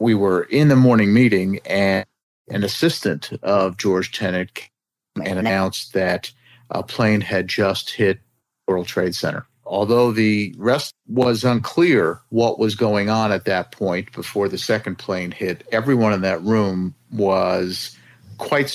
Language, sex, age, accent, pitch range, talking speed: English, male, 50-69, American, 95-110 Hz, 150 wpm